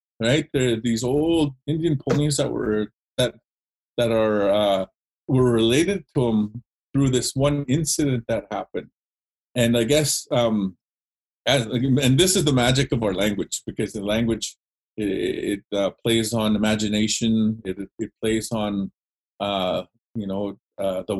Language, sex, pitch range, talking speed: English, male, 105-130 Hz, 150 wpm